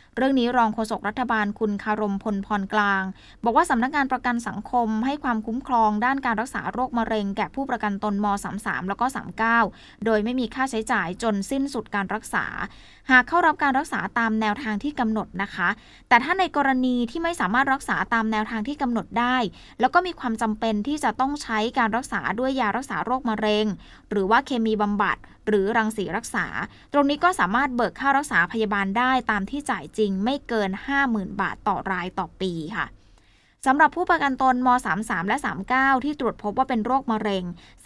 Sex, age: female, 20-39